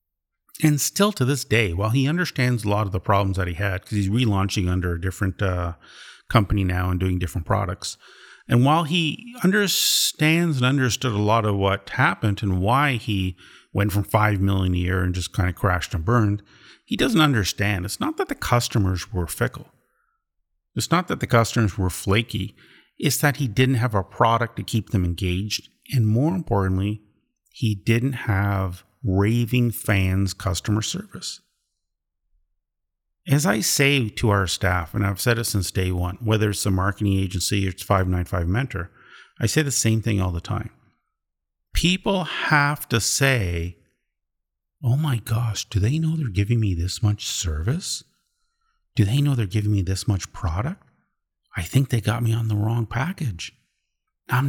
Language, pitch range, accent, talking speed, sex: English, 95-125 Hz, American, 175 wpm, male